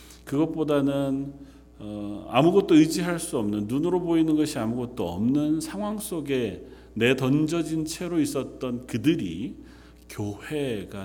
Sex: male